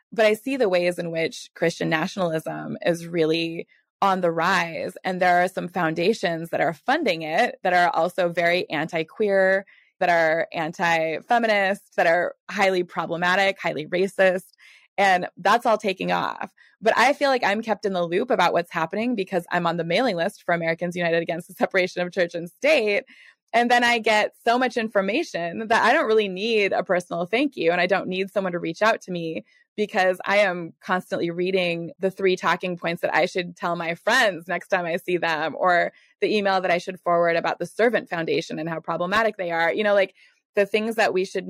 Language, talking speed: English, 200 wpm